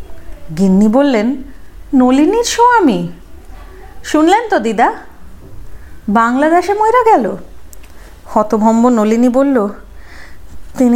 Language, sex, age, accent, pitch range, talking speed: Hindi, female, 30-49, native, 205-285 Hz, 60 wpm